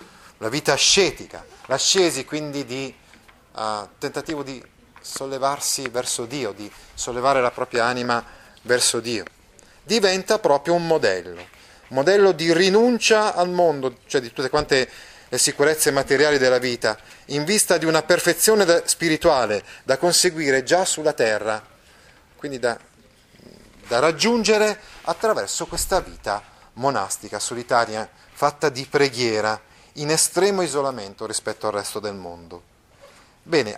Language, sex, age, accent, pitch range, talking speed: Italian, male, 30-49, native, 120-170 Hz, 120 wpm